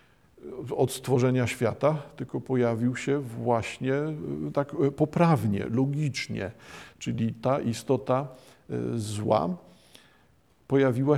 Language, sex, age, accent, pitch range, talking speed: Polish, male, 50-69, native, 120-145 Hz, 80 wpm